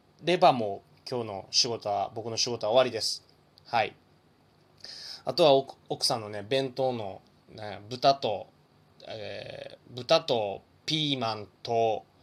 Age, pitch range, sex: 20-39, 110-180 Hz, male